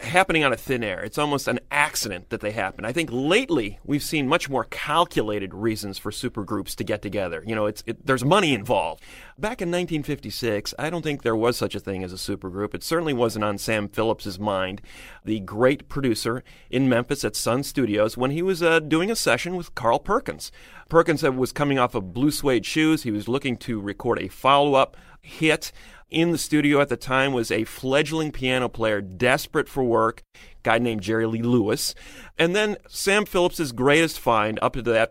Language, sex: English, male